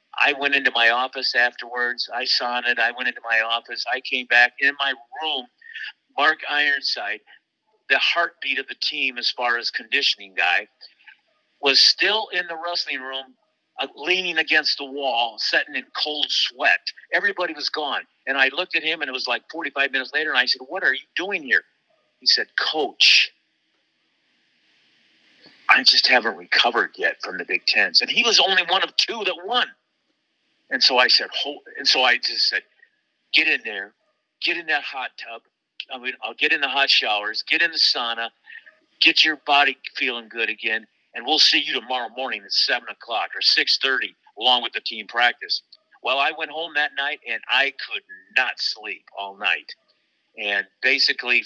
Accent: American